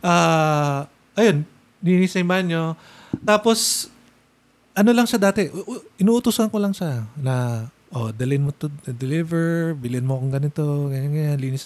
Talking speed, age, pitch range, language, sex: 145 wpm, 20-39, 140-190 Hz, Filipino, male